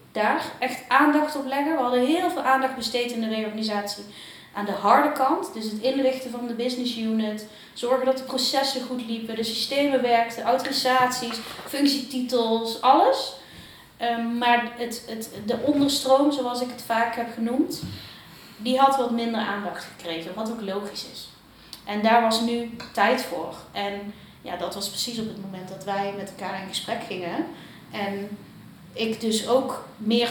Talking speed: 170 wpm